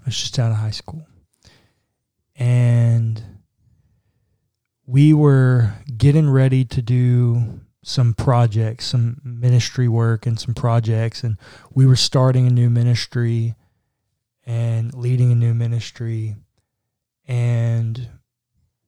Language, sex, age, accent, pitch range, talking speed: English, male, 20-39, American, 115-125 Hz, 110 wpm